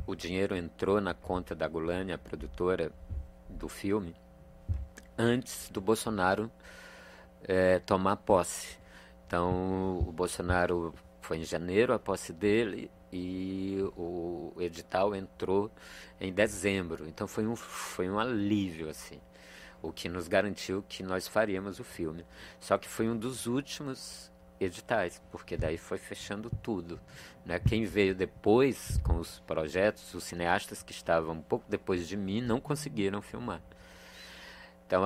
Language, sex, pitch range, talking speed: Portuguese, male, 80-100 Hz, 135 wpm